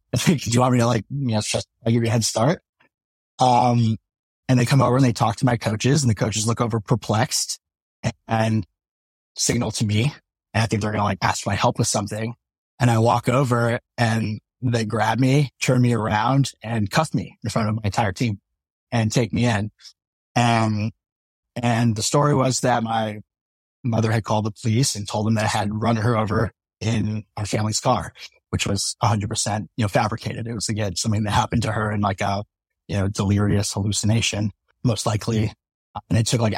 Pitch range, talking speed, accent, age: 105-120 Hz, 210 wpm, American, 30-49